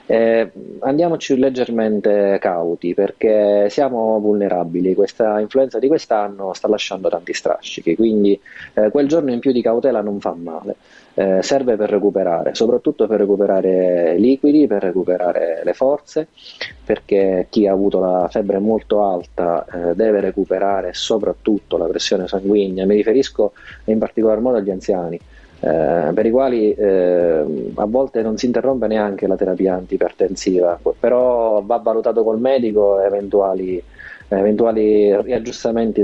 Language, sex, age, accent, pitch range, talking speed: Italian, male, 30-49, native, 95-115 Hz, 135 wpm